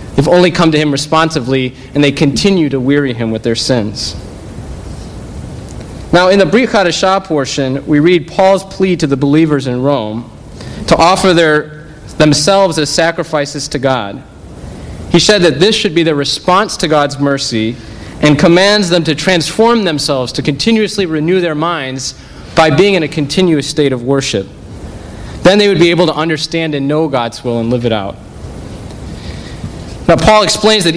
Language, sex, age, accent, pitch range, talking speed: English, male, 30-49, American, 140-175 Hz, 170 wpm